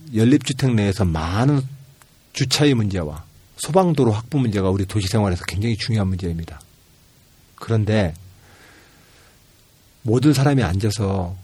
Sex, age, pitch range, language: male, 40-59, 100-160 Hz, Korean